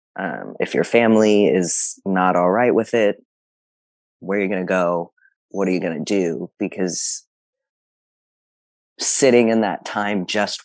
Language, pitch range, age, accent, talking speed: English, 90-115 Hz, 30-49, American, 145 wpm